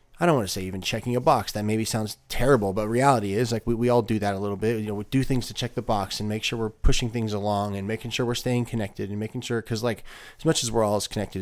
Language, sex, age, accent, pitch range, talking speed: English, male, 30-49, American, 95-120 Hz, 310 wpm